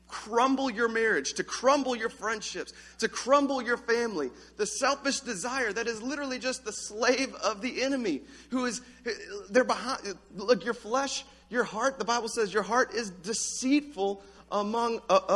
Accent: American